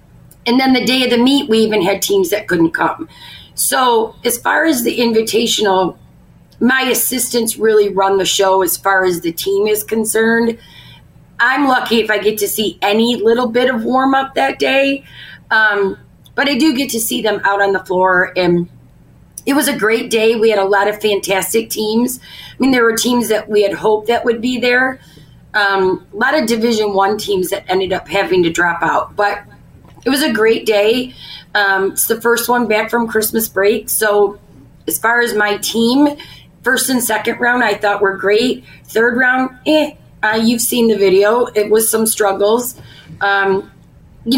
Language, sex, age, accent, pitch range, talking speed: English, female, 30-49, American, 200-245 Hz, 195 wpm